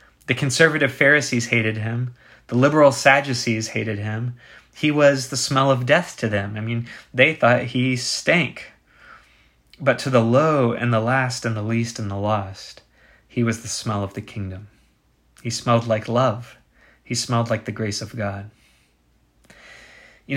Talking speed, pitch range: 165 wpm, 110-130 Hz